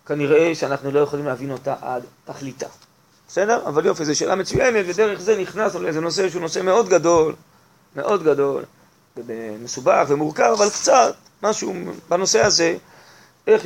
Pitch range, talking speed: 155-225 Hz, 145 wpm